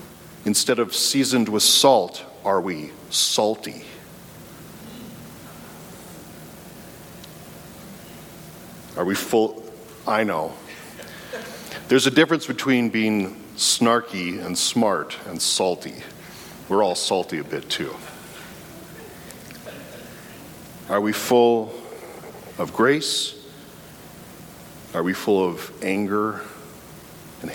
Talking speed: 85 wpm